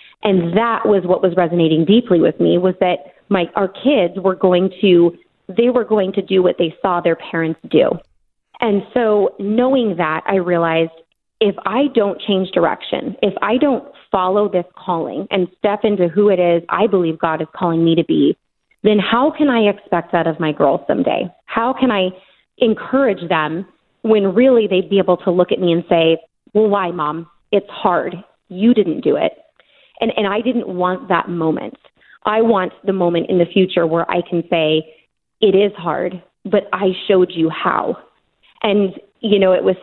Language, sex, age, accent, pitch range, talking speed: English, female, 30-49, American, 175-205 Hz, 190 wpm